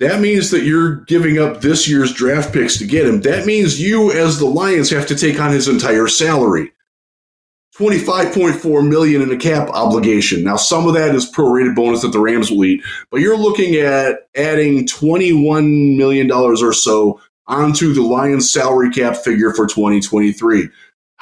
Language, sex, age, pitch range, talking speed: English, male, 20-39, 120-170 Hz, 175 wpm